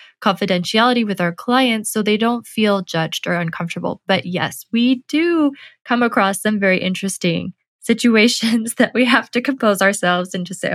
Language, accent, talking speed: English, American, 165 wpm